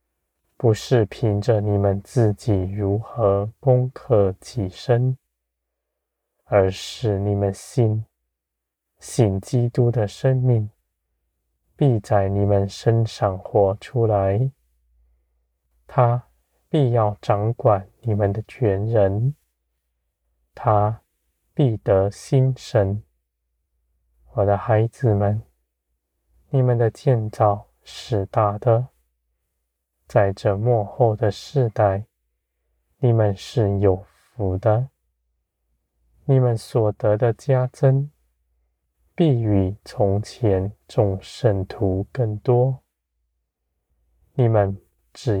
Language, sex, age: Chinese, male, 20-39